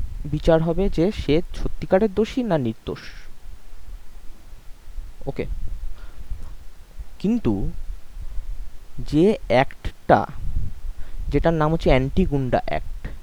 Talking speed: 55 wpm